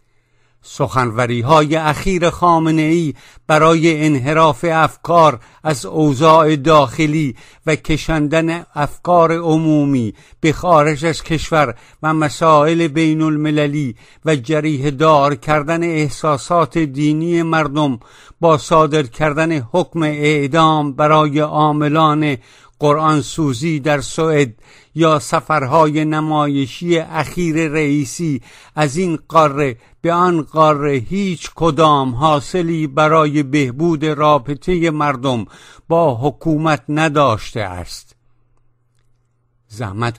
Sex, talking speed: male, 95 wpm